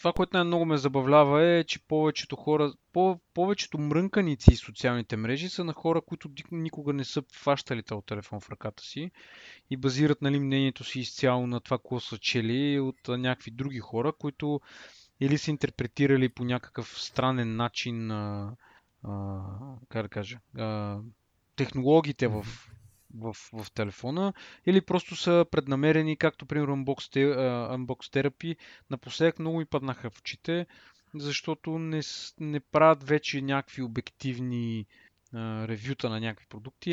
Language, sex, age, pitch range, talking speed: Bulgarian, male, 20-39, 120-150 Hz, 145 wpm